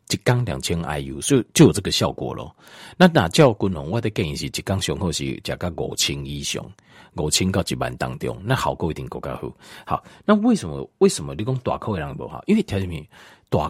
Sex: male